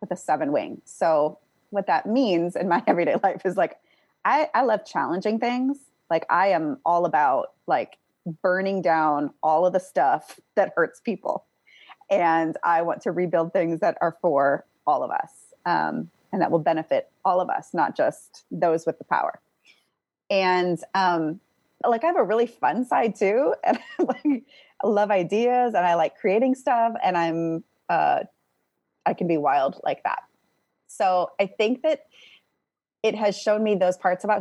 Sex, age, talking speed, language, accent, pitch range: female, 30-49, 175 wpm, English, American, 170-235 Hz